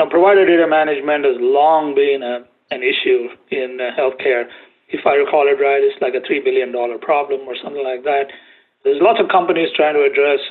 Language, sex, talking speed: English, male, 205 wpm